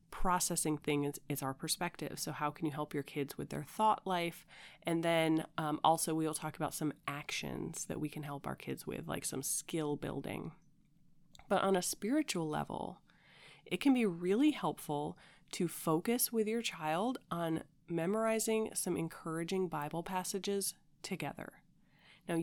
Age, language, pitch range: 30-49, English, 150-195 Hz